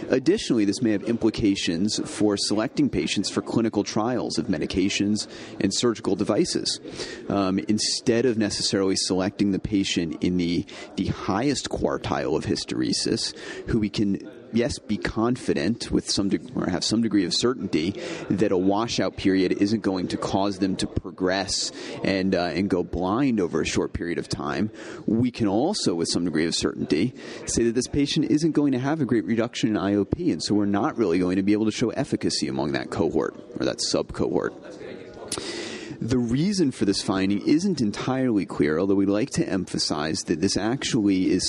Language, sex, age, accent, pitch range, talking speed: English, male, 30-49, American, 95-115 Hz, 180 wpm